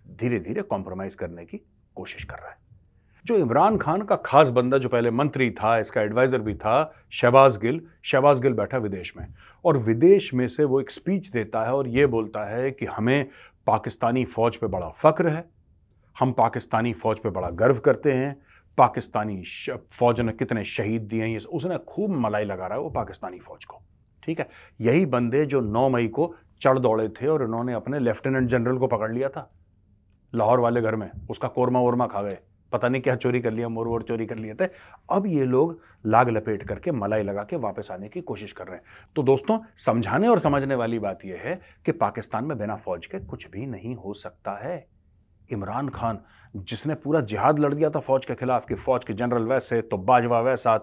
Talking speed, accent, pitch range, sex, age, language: 200 wpm, native, 110-135 Hz, male, 30-49, Hindi